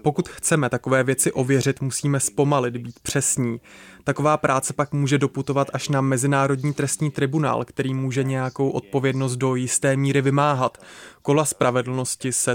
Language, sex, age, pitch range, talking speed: Czech, male, 20-39, 130-145 Hz, 145 wpm